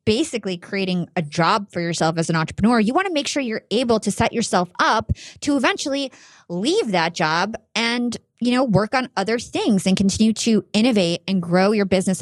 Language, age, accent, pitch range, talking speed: English, 30-49, American, 185-230 Hz, 195 wpm